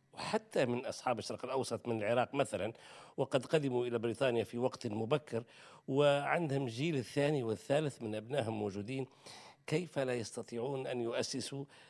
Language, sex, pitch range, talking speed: Arabic, male, 120-145 Hz, 135 wpm